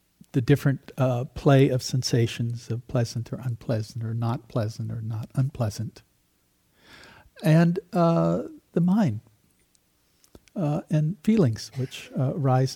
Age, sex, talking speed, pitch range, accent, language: 60-79, male, 120 wpm, 115-165 Hz, American, English